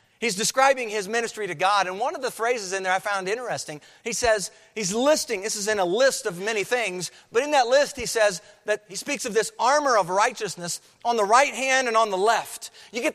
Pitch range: 185-245 Hz